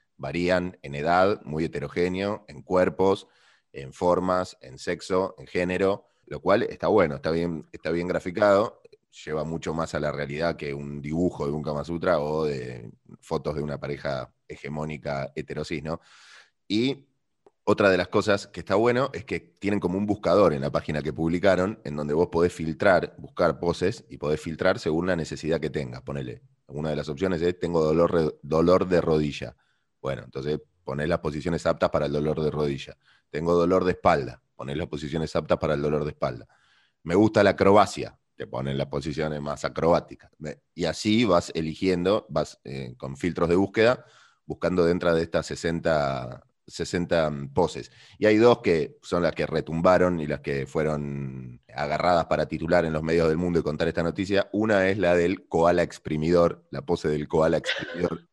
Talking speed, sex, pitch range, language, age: 180 wpm, male, 75-90 Hz, Spanish, 20-39